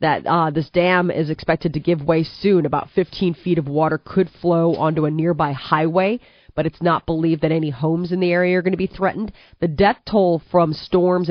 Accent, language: American, English